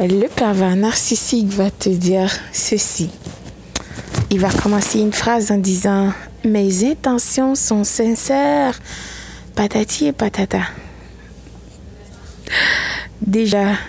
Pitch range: 185-220 Hz